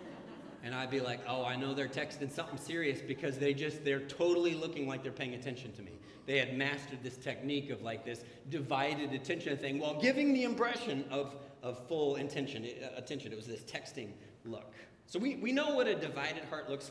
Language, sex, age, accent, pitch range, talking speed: English, male, 40-59, American, 140-180 Hz, 200 wpm